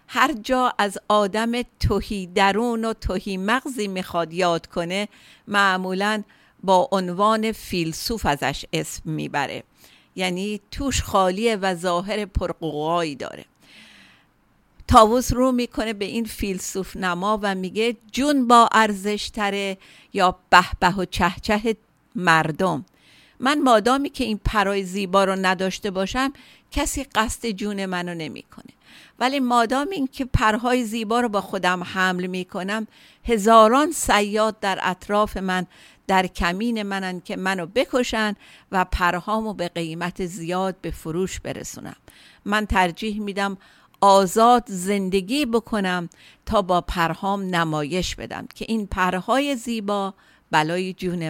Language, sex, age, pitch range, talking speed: Persian, female, 50-69, 185-230 Hz, 115 wpm